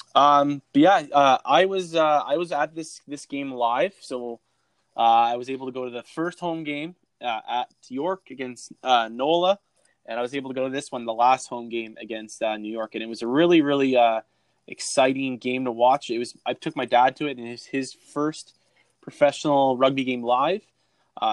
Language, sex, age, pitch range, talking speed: English, male, 20-39, 120-150 Hz, 215 wpm